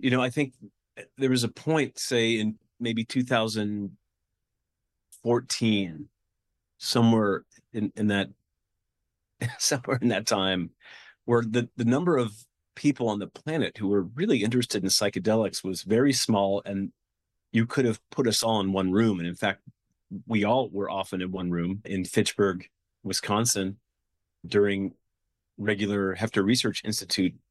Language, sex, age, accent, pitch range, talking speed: English, male, 30-49, American, 100-120 Hz, 145 wpm